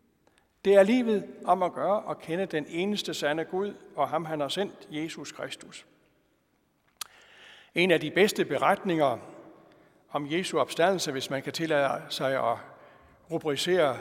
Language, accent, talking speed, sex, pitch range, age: Danish, native, 145 wpm, male, 150-200 Hz, 60-79